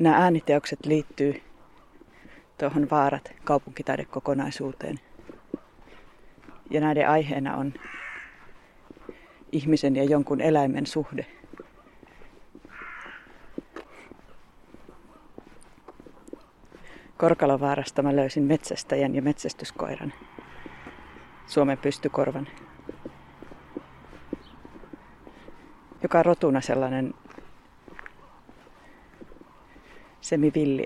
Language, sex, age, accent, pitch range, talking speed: Finnish, female, 30-49, native, 135-150 Hz, 55 wpm